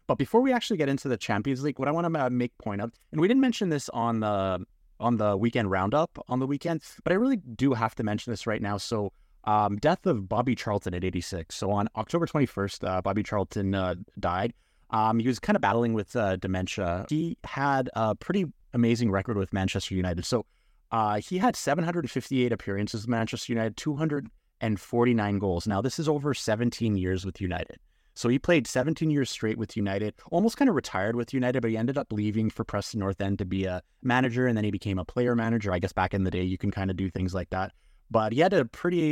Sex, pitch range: male, 100-130 Hz